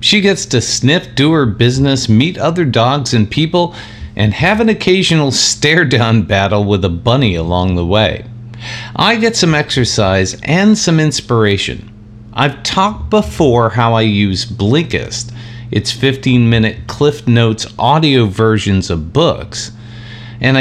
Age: 50-69